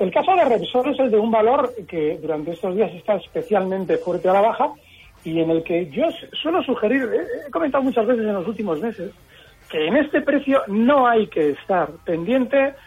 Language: Spanish